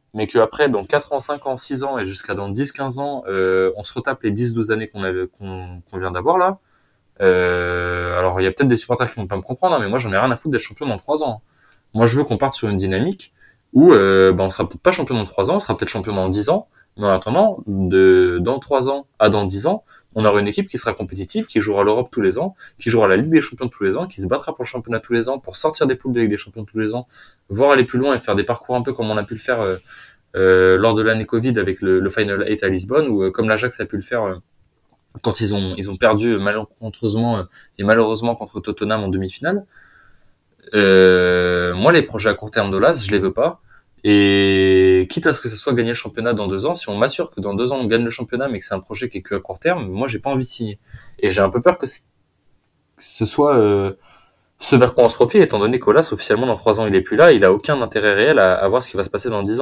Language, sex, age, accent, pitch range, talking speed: French, male, 20-39, French, 95-125 Hz, 280 wpm